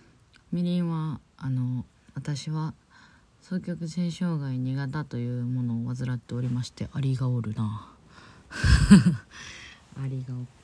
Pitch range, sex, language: 115-140 Hz, female, Japanese